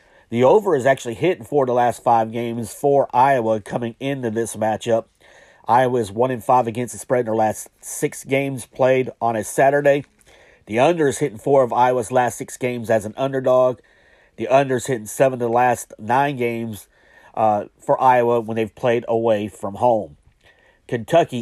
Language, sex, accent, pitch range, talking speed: English, male, American, 115-135 Hz, 180 wpm